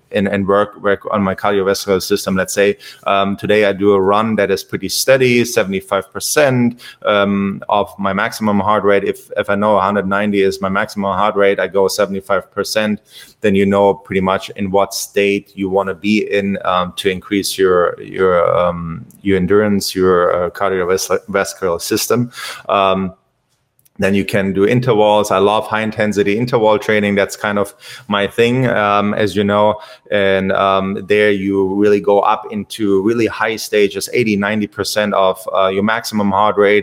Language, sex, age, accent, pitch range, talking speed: English, male, 30-49, German, 95-105 Hz, 170 wpm